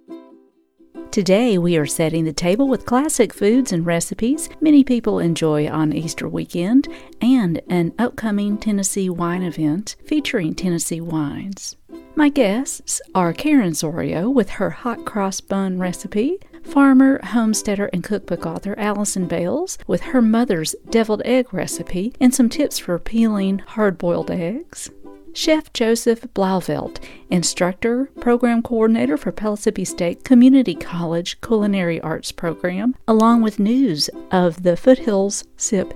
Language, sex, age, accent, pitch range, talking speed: English, female, 50-69, American, 170-245 Hz, 130 wpm